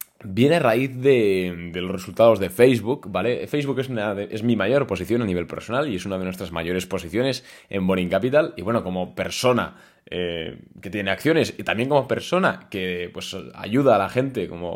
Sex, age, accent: male, 20-39, Spanish